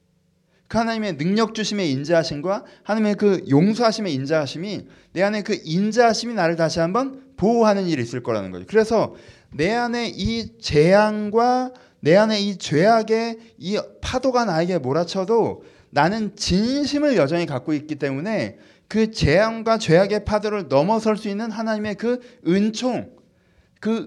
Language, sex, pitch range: Korean, male, 160-230 Hz